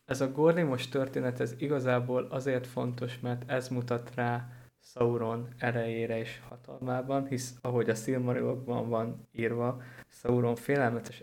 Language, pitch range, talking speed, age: Hungarian, 115-125 Hz, 130 wpm, 20-39